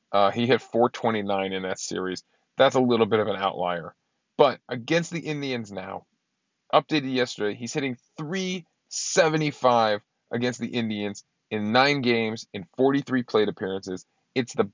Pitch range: 100-130 Hz